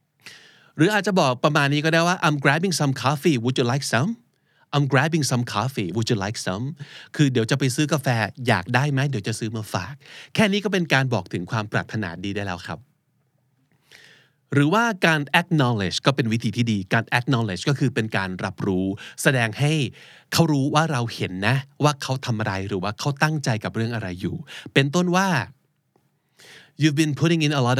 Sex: male